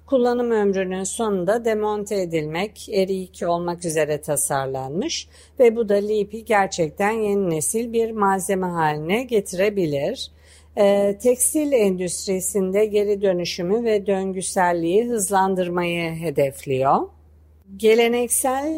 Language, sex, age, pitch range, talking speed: Turkish, female, 50-69, 170-215 Hz, 100 wpm